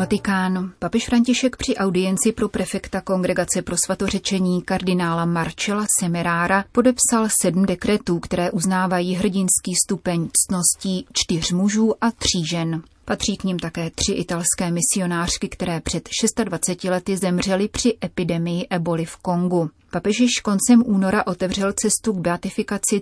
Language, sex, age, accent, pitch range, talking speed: Czech, female, 30-49, native, 175-200 Hz, 130 wpm